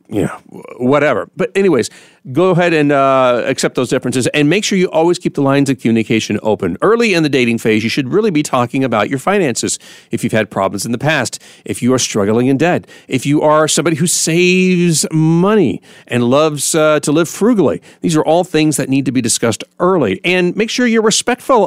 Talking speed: 210 wpm